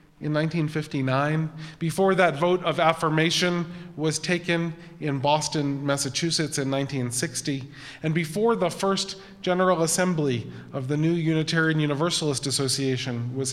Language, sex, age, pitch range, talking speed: English, male, 40-59, 145-185 Hz, 120 wpm